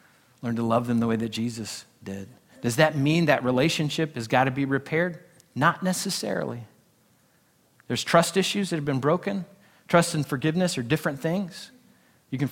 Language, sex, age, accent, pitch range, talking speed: English, male, 40-59, American, 120-160 Hz, 175 wpm